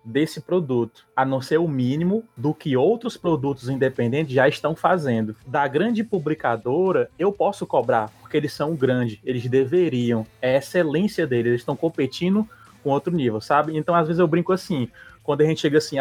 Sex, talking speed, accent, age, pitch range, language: male, 180 wpm, Brazilian, 20-39, 120-160 Hz, Portuguese